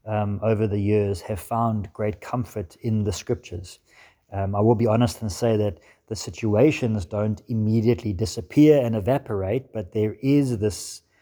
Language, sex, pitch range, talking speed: English, male, 105-125 Hz, 160 wpm